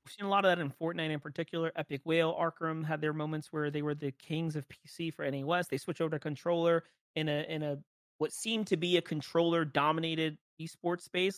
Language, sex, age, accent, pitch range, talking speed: English, male, 30-49, American, 150-190 Hz, 225 wpm